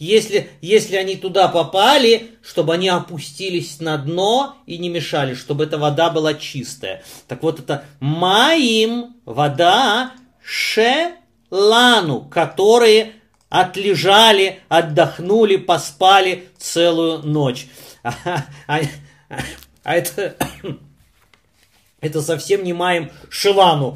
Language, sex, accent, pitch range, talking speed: Russian, male, native, 145-190 Hz, 100 wpm